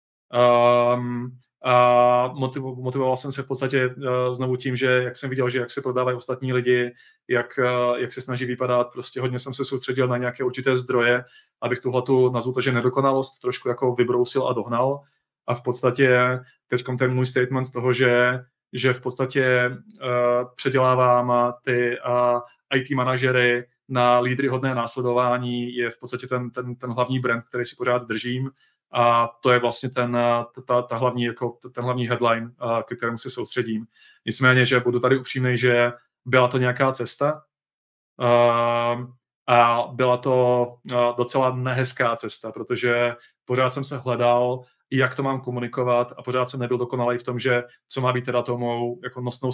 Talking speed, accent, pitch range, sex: 165 wpm, native, 120-130 Hz, male